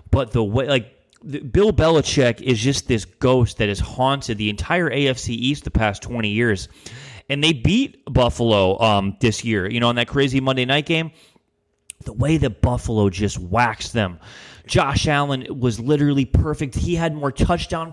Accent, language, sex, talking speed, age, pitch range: American, English, male, 175 wpm, 30-49, 110-160 Hz